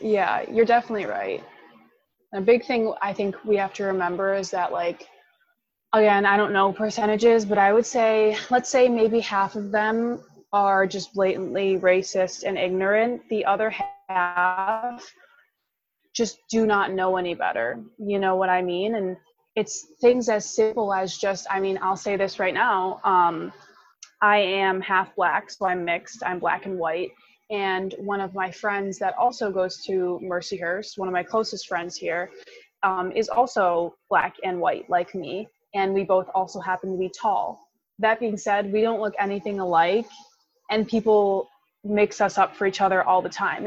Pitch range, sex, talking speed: 185-220 Hz, female, 175 wpm